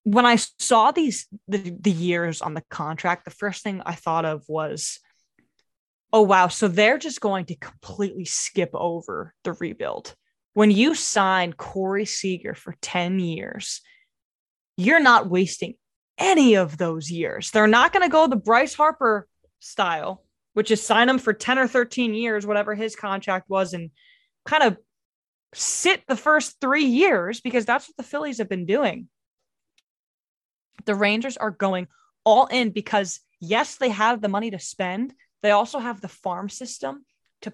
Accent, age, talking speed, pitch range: American, 20-39, 165 wpm, 185-235 Hz